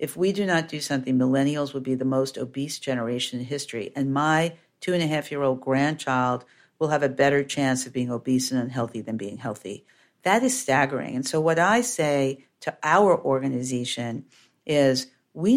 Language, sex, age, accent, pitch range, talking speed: English, female, 50-69, American, 130-165 Hz, 175 wpm